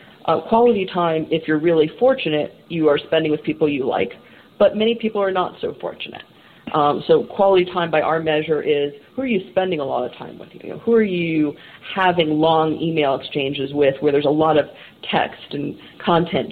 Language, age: English, 40-59